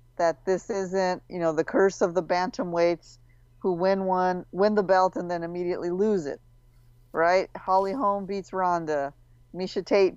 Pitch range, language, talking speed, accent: 120-180 Hz, English, 165 wpm, American